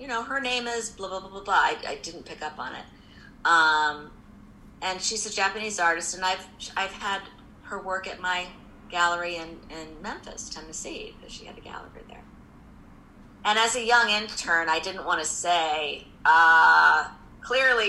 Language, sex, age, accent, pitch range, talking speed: French, female, 40-59, American, 175-215 Hz, 180 wpm